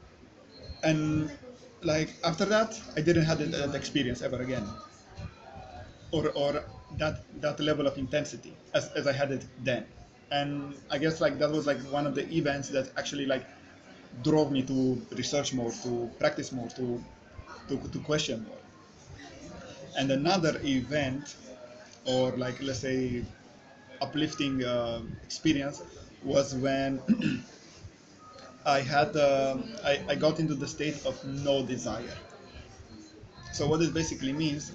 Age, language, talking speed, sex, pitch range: 20-39, English, 140 wpm, male, 130-155 Hz